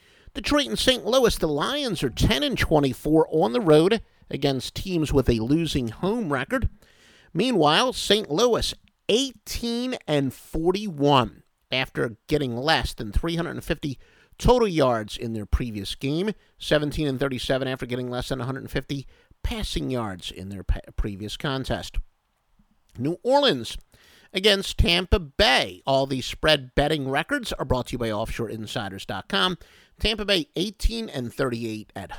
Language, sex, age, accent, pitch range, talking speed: English, male, 50-69, American, 120-180 Hz, 125 wpm